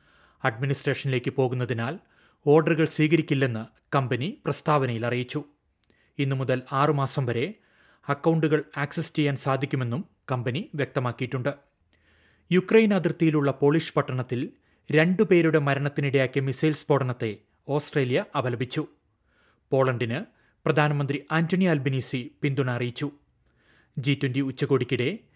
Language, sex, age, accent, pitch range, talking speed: Malayalam, male, 30-49, native, 120-145 Hz, 85 wpm